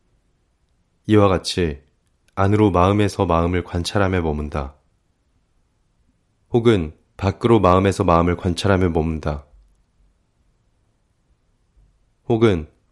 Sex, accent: male, native